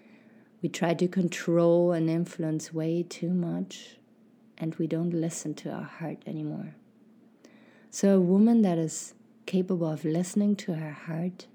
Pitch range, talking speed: 165-220 Hz, 145 wpm